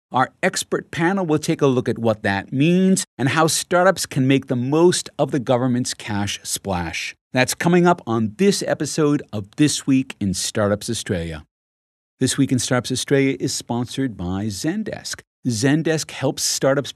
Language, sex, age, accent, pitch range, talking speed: English, male, 50-69, American, 115-155 Hz, 165 wpm